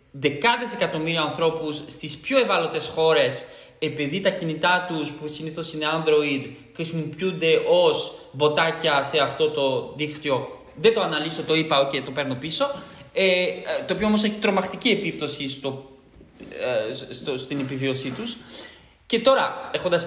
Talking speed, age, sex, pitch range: 140 wpm, 20-39, male, 150-230 Hz